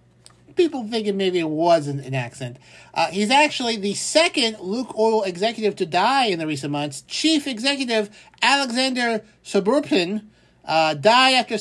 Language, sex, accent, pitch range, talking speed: English, male, American, 155-235 Hz, 150 wpm